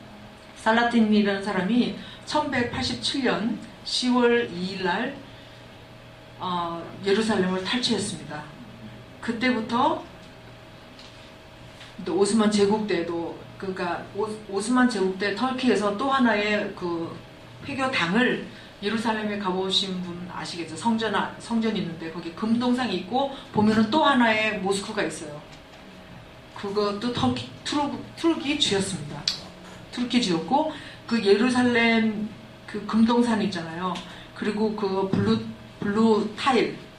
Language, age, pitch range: Korean, 40-59, 185-230 Hz